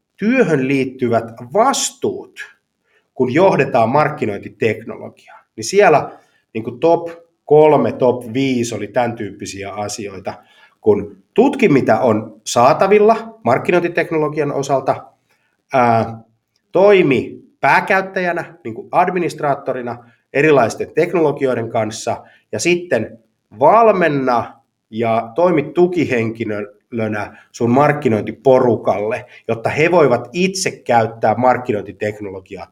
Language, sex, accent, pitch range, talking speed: Finnish, male, native, 110-155 Hz, 75 wpm